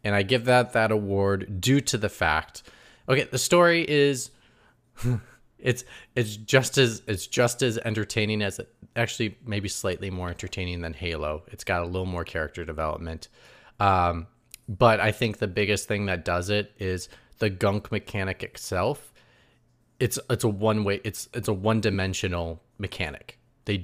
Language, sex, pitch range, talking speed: English, male, 90-110 Hz, 165 wpm